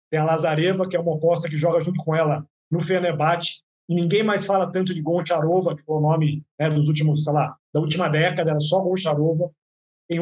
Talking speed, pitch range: 195 wpm, 155-180 Hz